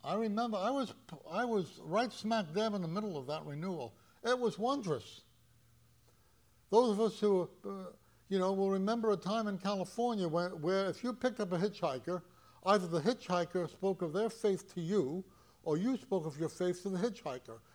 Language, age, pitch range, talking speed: English, 60-79, 120-200 Hz, 195 wpm